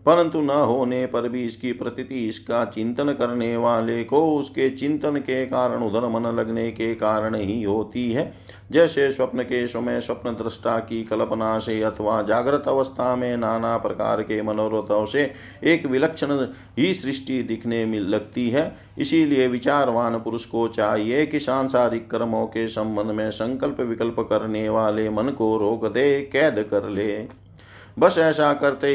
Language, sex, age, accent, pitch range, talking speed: Hindi, male, 50-69, native, 110-130 Hz, 155 wpm